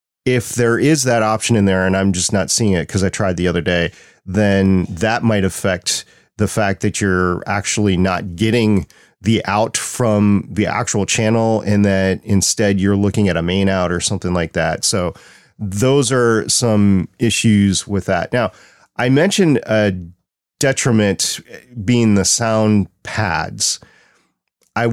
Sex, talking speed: male, 160 wpm